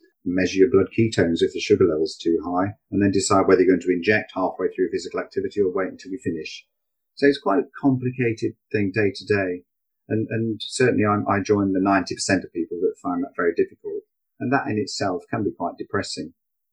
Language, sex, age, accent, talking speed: English, male, 40-59, British, 215 wpm